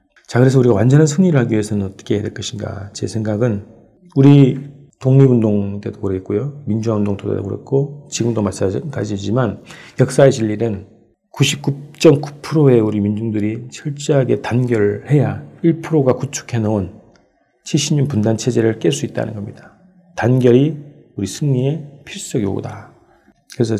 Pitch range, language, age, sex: 110-140 Hz, Korean, 40-59, male